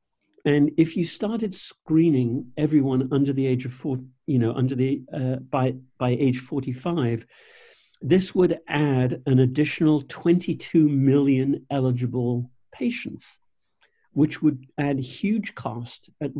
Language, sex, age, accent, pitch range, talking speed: English, male, 50-69, British, 125-155 Hz, 130 wpm